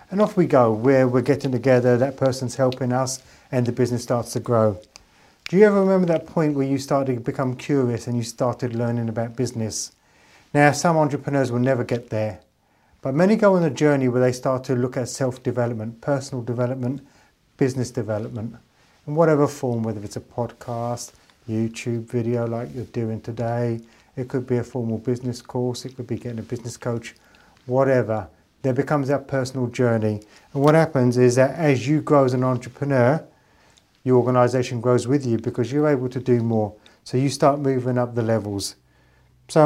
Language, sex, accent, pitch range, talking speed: English, male, British, 120-140 Hz, 185 wpm